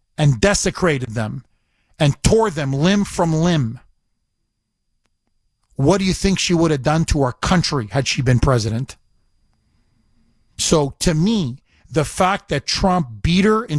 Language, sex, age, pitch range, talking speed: English, male, 50-69, 135-185 Hz, 150 wpm